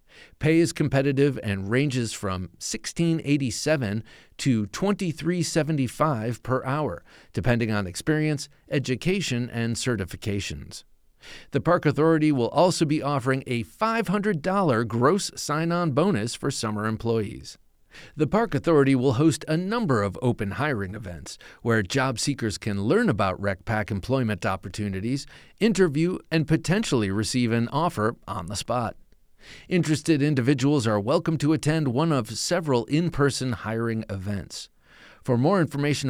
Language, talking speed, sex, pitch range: English, 125 wpm, male, 110-155 Hz